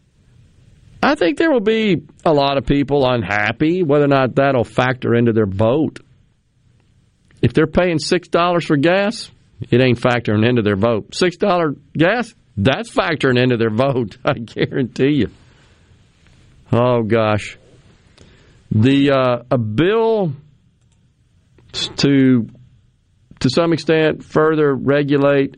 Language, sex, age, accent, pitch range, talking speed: English, male, 50-69, American, 115-140 Hz, 125 wpm